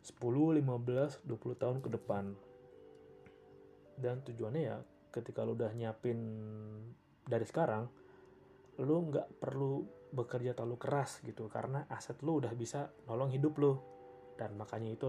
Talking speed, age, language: 130 wpm, 20-39, Indonesian